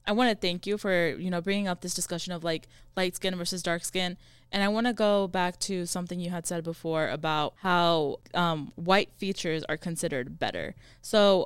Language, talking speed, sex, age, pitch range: English, 210 wpm, female, 20-39, 170-195 Hz